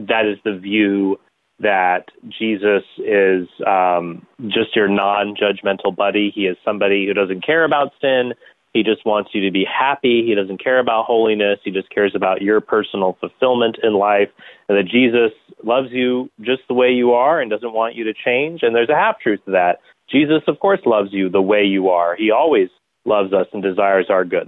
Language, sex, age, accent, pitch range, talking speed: English, male, 30-49, American, 100-120 Hz, 195 wpm